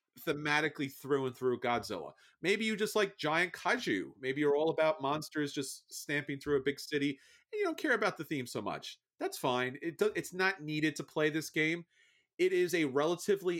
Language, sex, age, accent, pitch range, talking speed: English, male, 30-49, American, 130-175 Hz, 205 wpm